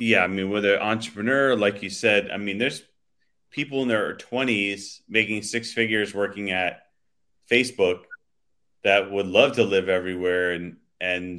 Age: 30-49